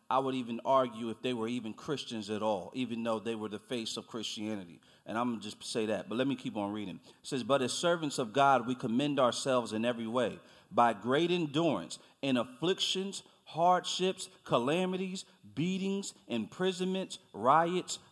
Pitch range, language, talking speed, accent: 125-180 Hz, English, 170 wpm, American